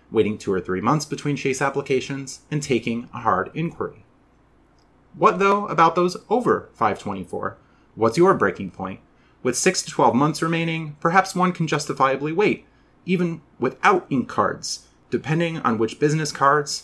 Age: 30-49